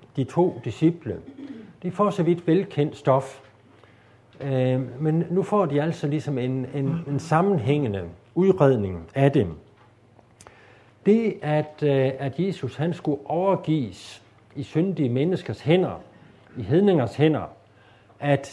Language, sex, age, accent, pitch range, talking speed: Danish, male, 50-69, native, 115-155 Hz, 115 wpm